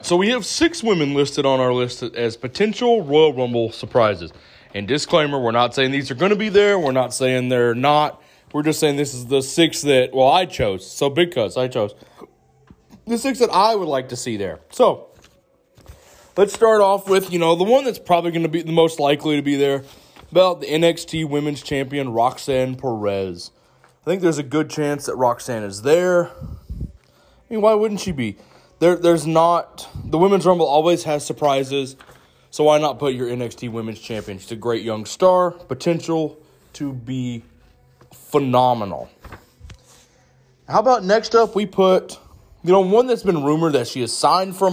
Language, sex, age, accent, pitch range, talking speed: English, male, 20-39, American, 125-170 Hz, 190 wpm